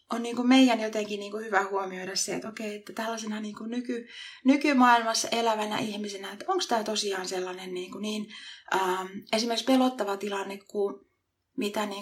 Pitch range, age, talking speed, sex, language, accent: 200-235 Hz, 30-49, 120 wpm, female, Finnish, native